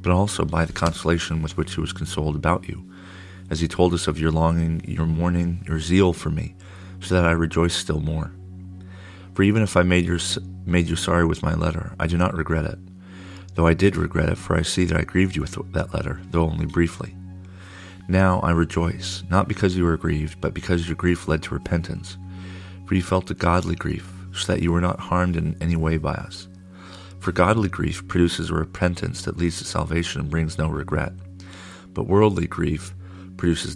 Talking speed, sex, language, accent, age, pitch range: 205 wpm, male, English, American, 40-59, 85-95 Hz